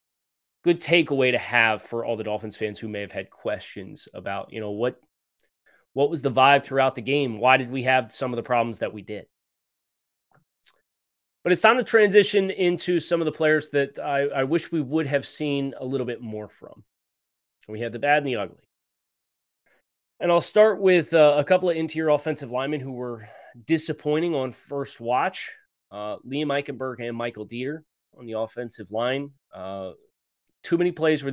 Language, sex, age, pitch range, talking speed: English, male, 20-39, 105-145 Hz, 190 wpm